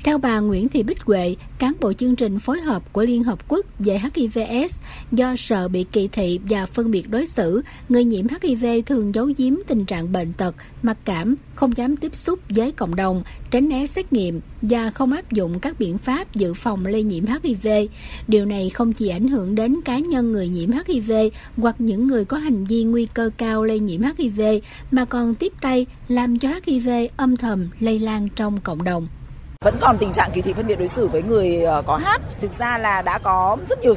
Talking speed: 215 wpm